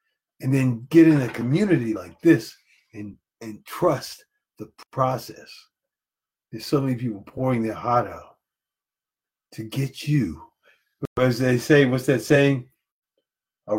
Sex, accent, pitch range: male, American, 110-145 Hz